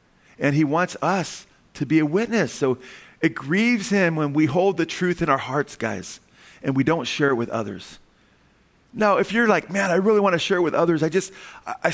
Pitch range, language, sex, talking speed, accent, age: 110-165 Hz, English, male, 220 wpm, American, 40-59